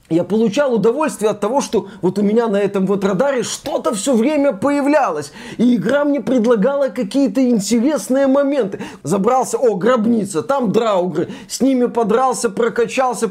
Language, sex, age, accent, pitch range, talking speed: Russian, male, 20-39, native, 210-270 Hz, 150 wpm